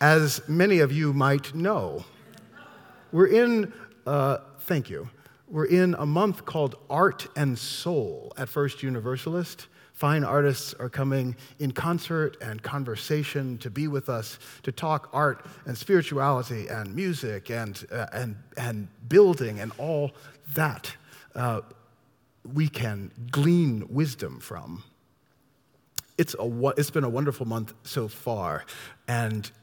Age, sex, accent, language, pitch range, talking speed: 40-59, male, American, English, 120-150 Hz, 130 wpm